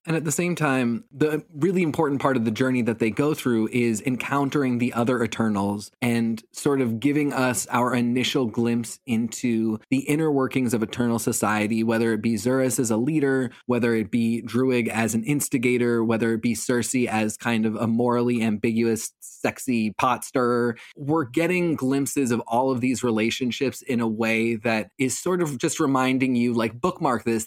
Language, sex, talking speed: English, male, 185 wpm